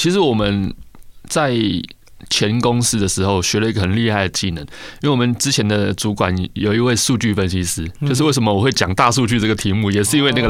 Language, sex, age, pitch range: Chinese, male, 20-39, 105-145 Hz